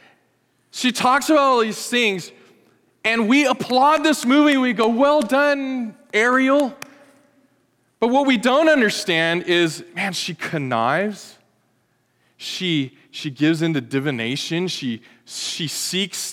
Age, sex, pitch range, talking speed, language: 20-39, male, 170-255 Hz, 125 wpm, English